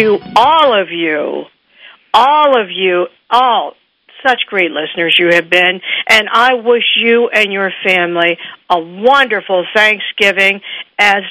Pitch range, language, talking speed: 185-250 Hz, English, 135 wpm